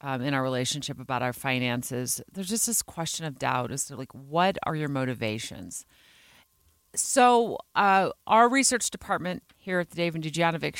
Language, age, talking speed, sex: English, 40-59, 165 wpm, female